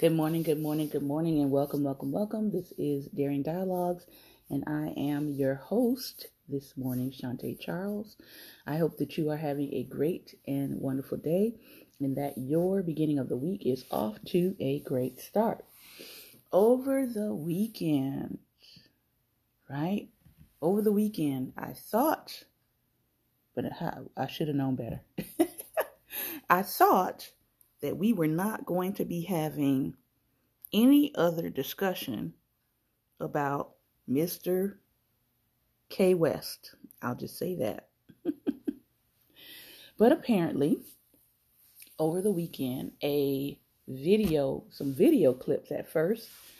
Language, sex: English, female